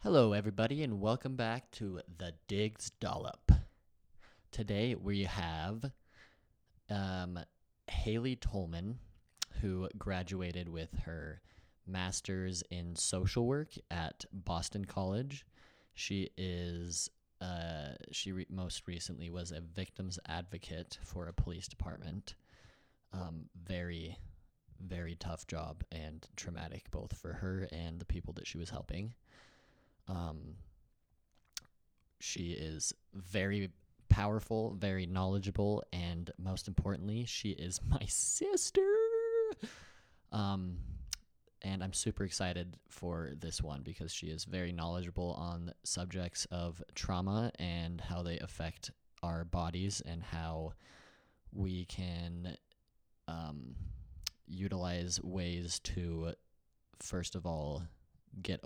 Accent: American